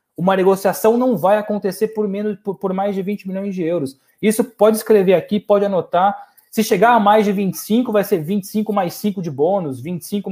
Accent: Brazilian